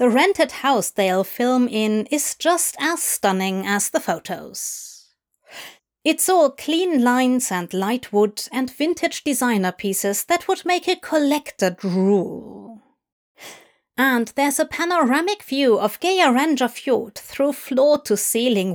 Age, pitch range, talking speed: 30-49, 205-285 Hz, 130 wpm